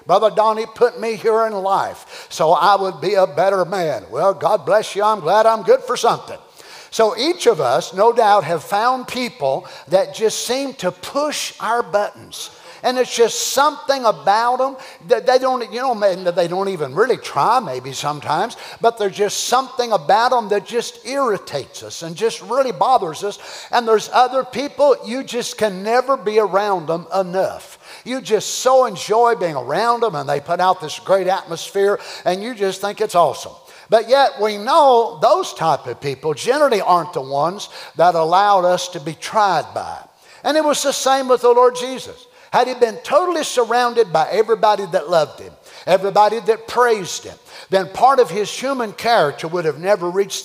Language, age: English, 50-69